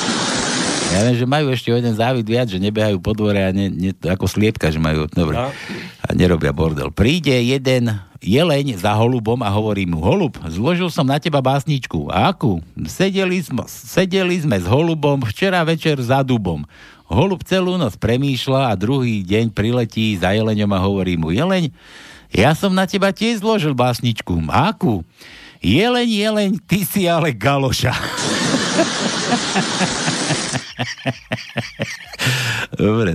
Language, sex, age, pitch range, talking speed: Slovak, male, 60-79, 100-145 Hz, 140 wpm